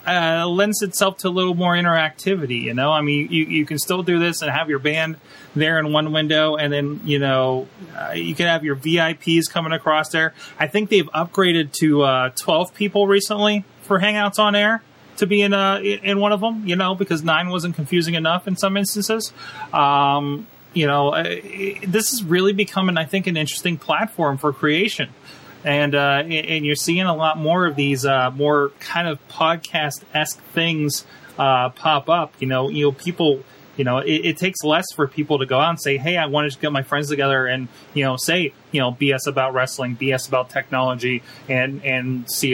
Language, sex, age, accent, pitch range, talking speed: English, male, 30-49, American, 135-175 Hz, 205 wpm